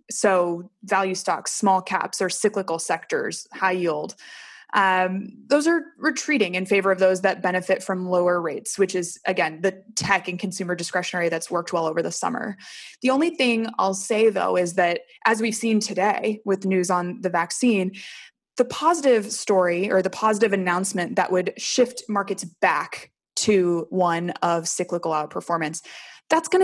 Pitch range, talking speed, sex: 180-225 Hz, 165 wpm, female